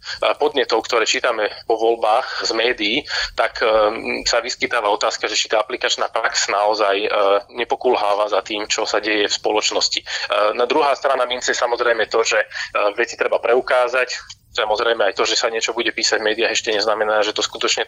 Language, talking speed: Slovak, 185 wpm